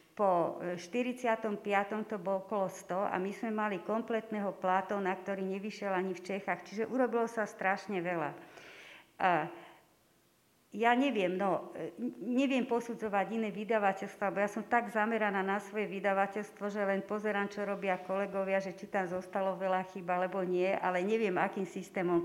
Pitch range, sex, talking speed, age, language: 185-215 Hz, female, 150 wpm, 50-69, Slovak